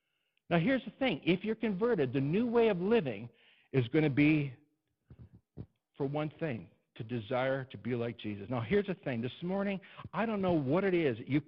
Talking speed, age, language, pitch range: 205 wpm, 60-79, English, 130-220 Hz